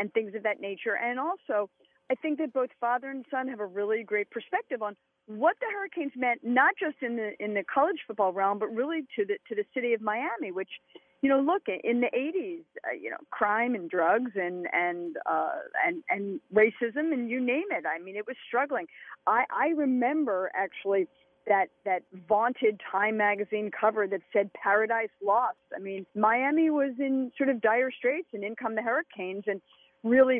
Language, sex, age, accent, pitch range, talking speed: English, female, 40-59, American, 200-260 Hz, 195 wpm